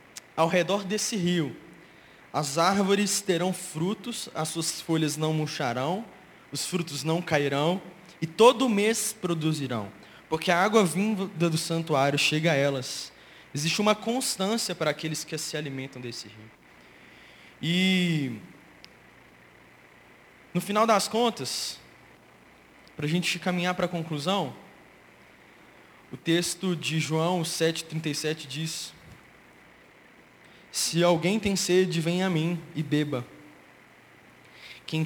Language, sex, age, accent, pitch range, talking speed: Portuguese, male, 20-39, Brazilian, 145-180 Hz, 115 wpm